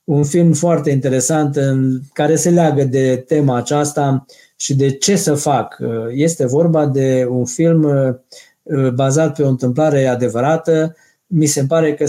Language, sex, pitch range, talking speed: Romanian, male, 135-160 Hz, 150 wpm